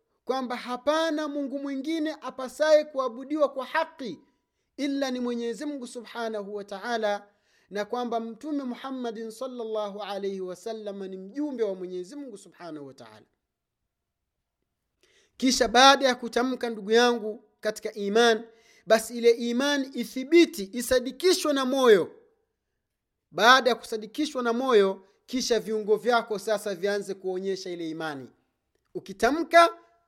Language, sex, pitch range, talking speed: Swahili, male, 220-290 Hz, 120 wpm